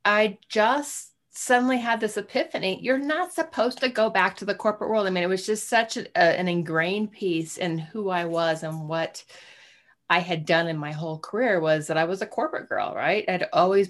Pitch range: 160-195 Hz